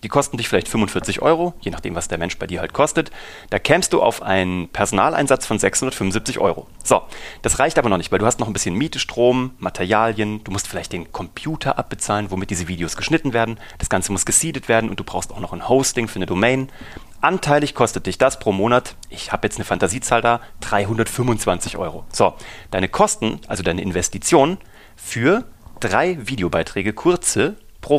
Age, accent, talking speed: 30-49, German, 195 wpm